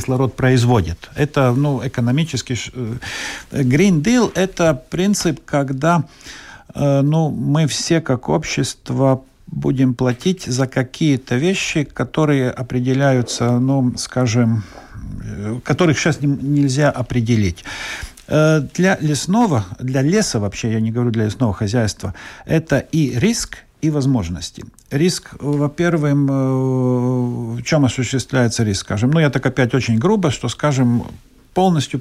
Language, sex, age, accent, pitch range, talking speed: Russian, male, 50-69, native, 120-150 Hz, 120 wpm